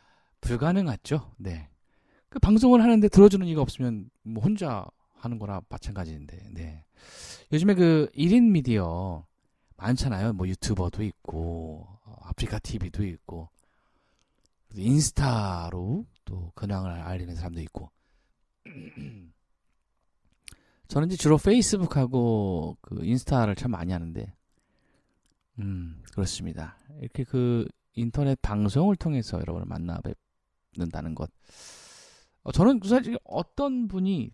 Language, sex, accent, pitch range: Korean, male, native, 90-145 Hz